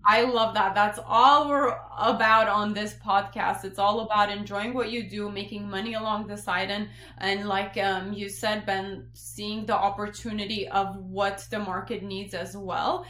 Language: English